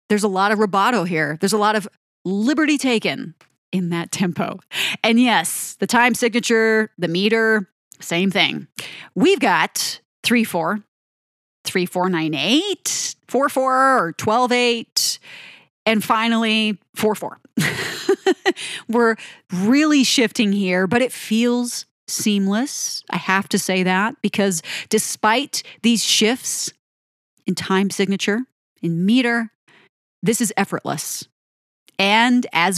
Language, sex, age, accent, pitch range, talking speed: English, female, 30-49, American, 185-245 Hz, 115 wpm